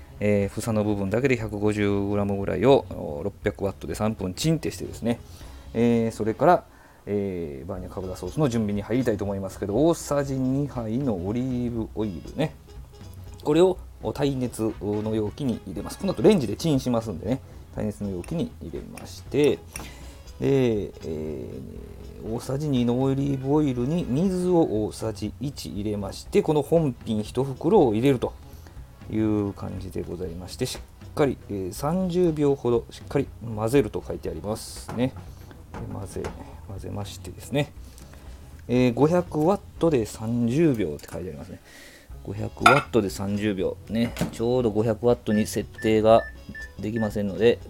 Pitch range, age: 95-125 Hz, 40-59